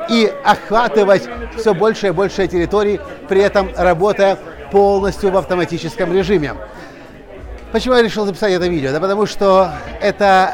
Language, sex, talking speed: Russian, male, 135 wpm